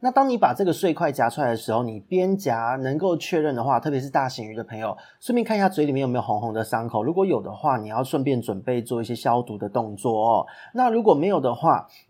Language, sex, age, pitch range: Chinese, male, 30-49, 115-155 Hz